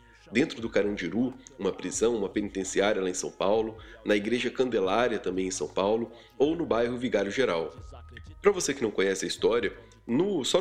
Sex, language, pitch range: male, Portuguese, 105-150 Hz